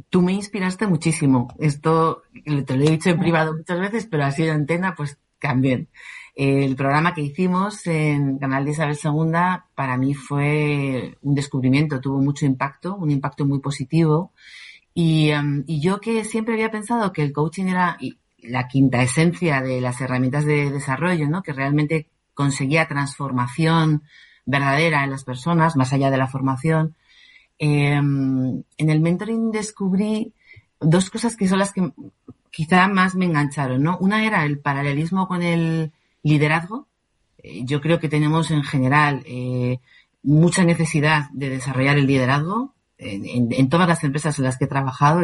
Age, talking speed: 40-59, 160 wpm